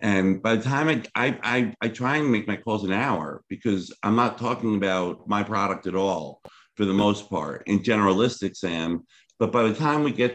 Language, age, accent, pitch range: English, 50-69, American, 95-110 Hz